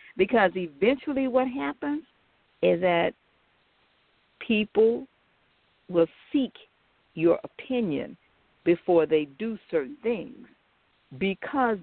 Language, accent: English, American